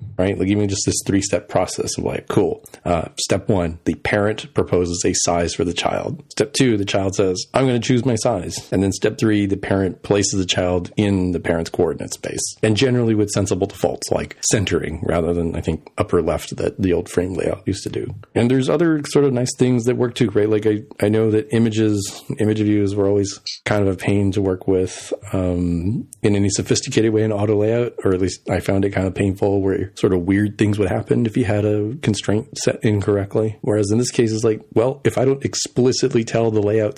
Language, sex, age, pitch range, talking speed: English, male, 40-59, 95-115 Hz, 230 wpm